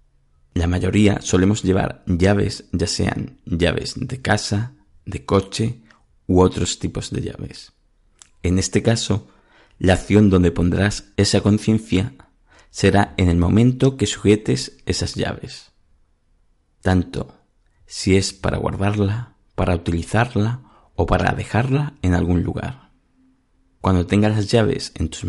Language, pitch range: Spanish, 85-110 Hz